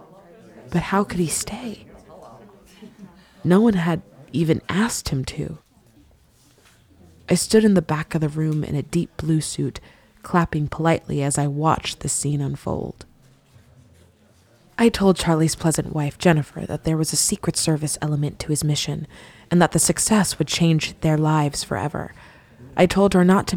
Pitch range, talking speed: 150-175 Hz, 160 wpm